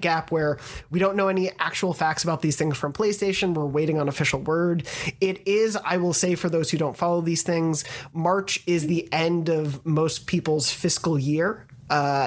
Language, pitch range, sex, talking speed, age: English, 145-175 Hz, male, 195 wpm, 30-49